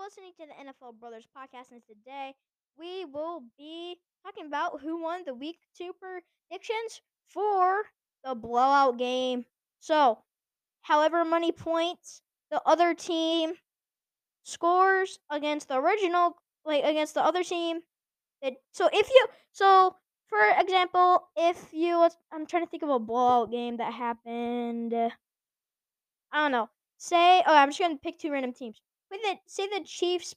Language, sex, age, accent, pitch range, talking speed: English, female, 10-29, American, 265-355 Hz, 145 wpm